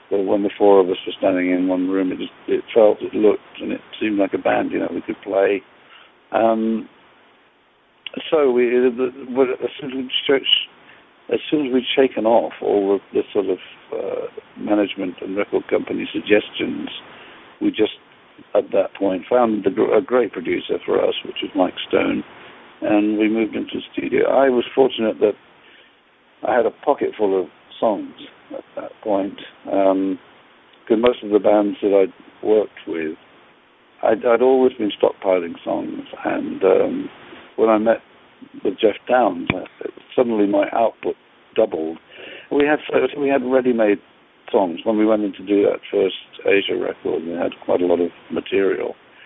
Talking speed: 165 wpm